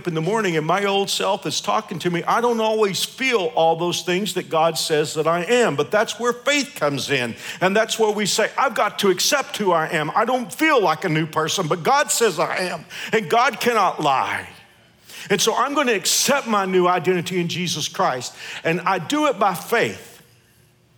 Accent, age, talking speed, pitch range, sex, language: American, 50-69, 215 wpm, 125-185 Hz, male, English